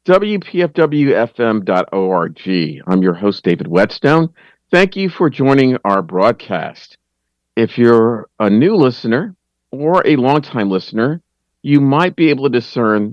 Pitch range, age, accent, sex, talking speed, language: 95-135 Hz, 50-69, American, male, 125 wpm, English